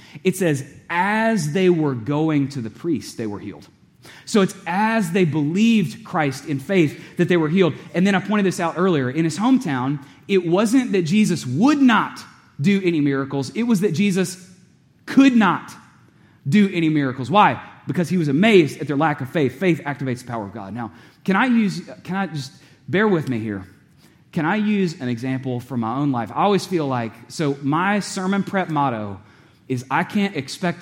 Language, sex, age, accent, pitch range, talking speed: English, male, 30-49, American, 130-185 Hz, 195 wpm